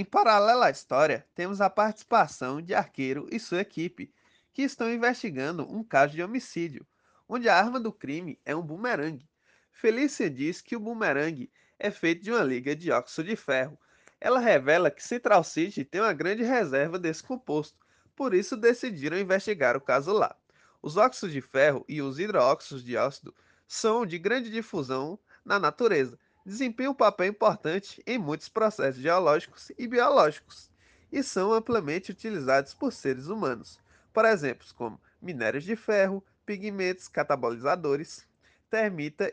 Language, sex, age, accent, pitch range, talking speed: Portuguese, male, 20-39, Brazilian, 150-235 Hz, 155 wpm